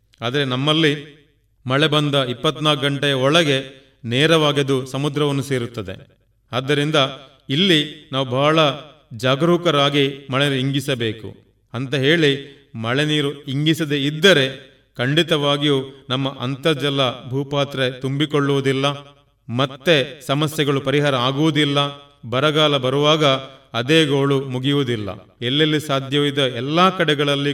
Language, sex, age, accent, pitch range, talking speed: Kannada, male, 30-49, native, 130-145 Hz, 85 wpm